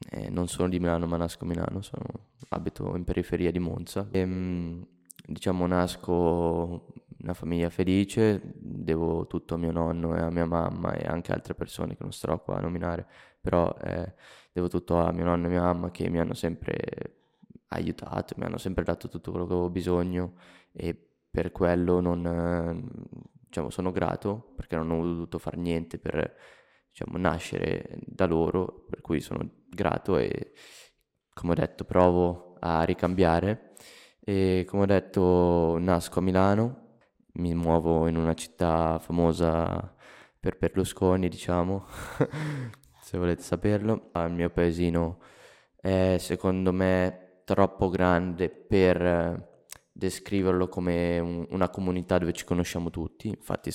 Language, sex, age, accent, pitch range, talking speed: Italian, male, 20-39, native, 85-95 Hz, 145 wpm